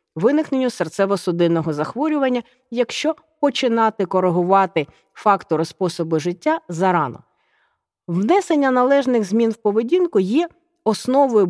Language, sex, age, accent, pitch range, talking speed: Ukrainian, female, 40-59, native, 185-255 Hz, 90 wpm